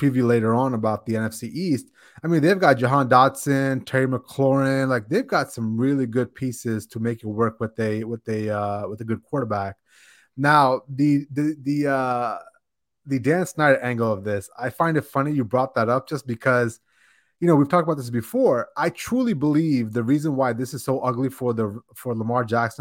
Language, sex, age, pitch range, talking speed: English, male, 20-39, 115-140 Hz, 205 wpm